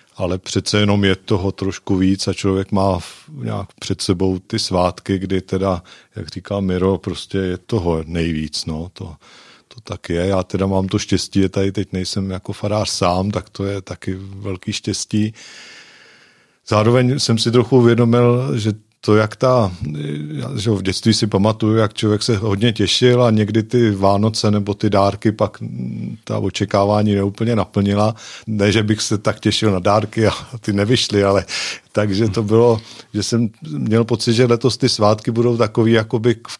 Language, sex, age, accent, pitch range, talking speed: Czech, male, 40-59, native, 100-115 Hz, 170 wpm